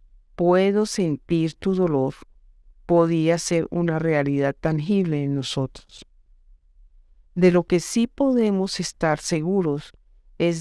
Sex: female